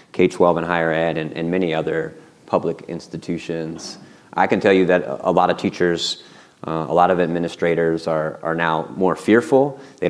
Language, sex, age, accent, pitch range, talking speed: English, male, 30-49, American, 80-95 Hz, 185 wpm